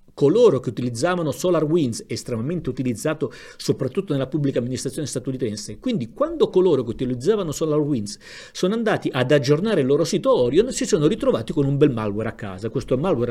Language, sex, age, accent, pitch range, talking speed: Italian, male, 50-69, native, 115-155 Hz, 160 wpm